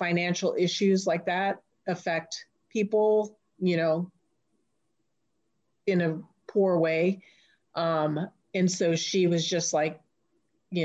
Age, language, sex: 40-59, English, female